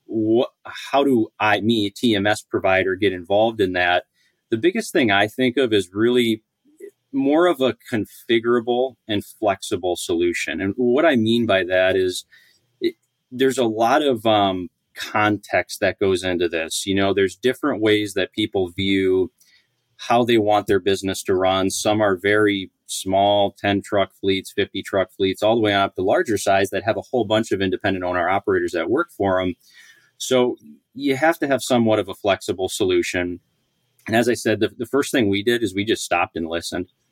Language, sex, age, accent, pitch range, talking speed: English, male, 30-49, American, 95-120 Hz, 185 wpm